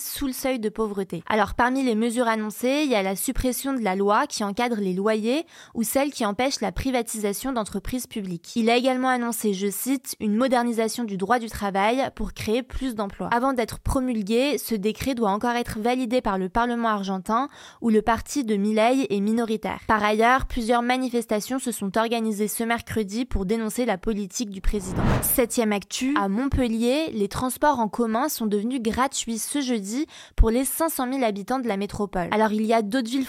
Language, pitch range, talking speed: French, 210-255 Hz, 195 wpm